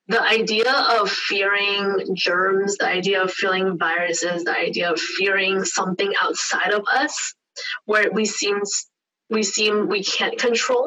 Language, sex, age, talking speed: English, female, 20-39, 145 wpm